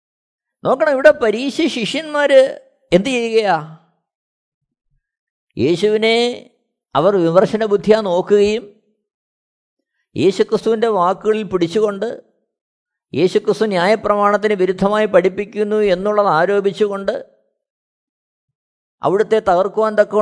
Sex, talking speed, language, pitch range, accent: male, 60 wpm, Malayalam, 170-240 Hz, native